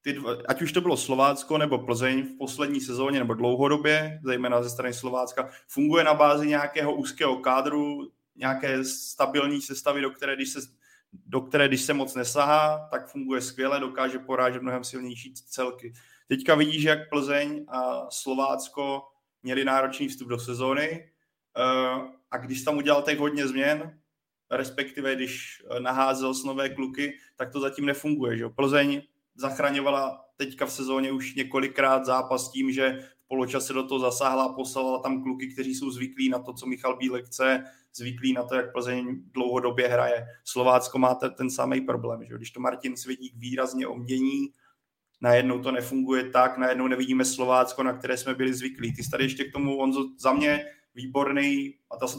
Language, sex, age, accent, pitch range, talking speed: Czech, male, 20-39, native, 125-140 Hz, 160 wpm